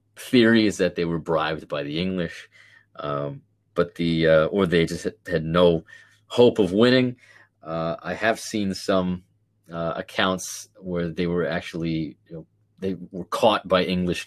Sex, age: male, 30-49